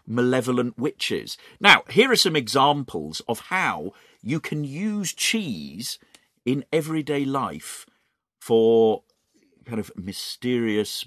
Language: English